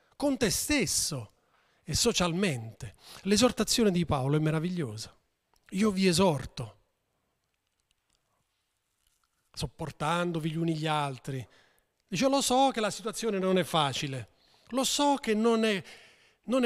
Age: 40-59